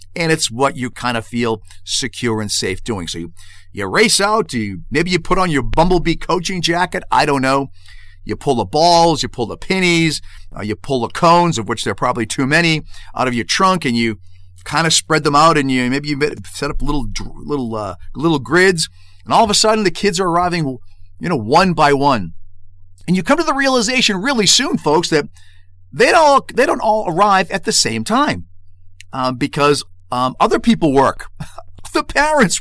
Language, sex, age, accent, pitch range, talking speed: English, male, 40-59, American, 100-165 Hz, 210 wpm